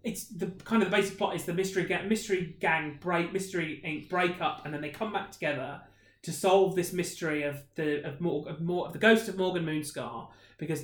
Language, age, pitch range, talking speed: English, 30-49, 165-200 Hz, 235 wpm